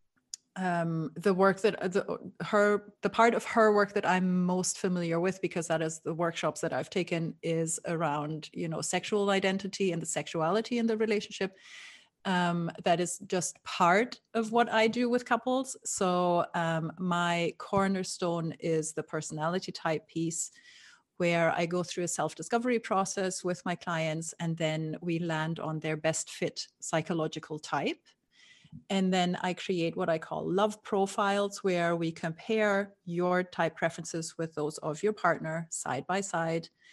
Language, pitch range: English, 165-200 Hz